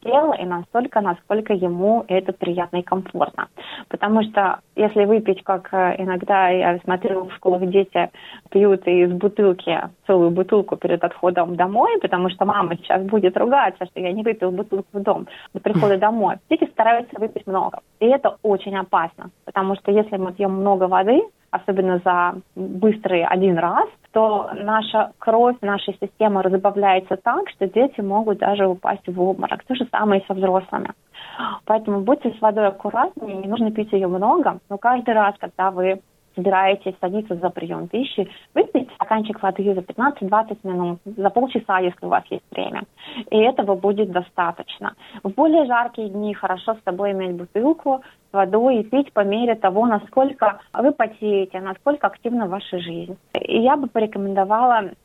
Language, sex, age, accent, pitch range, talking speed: Russian, female, 30-49, native, 185-220 Hz, 160 wpm